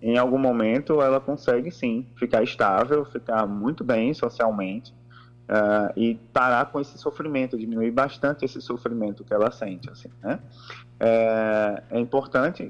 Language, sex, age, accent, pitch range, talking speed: Portuguese, male, 20-39, Brazilian, 110-135 Hz, 140 wpm